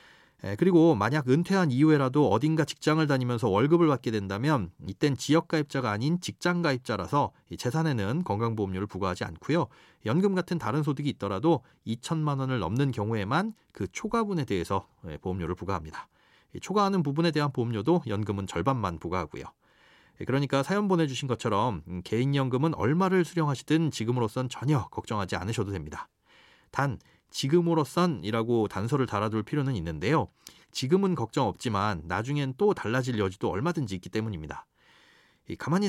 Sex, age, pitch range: male, 30-49, 110-165 Hz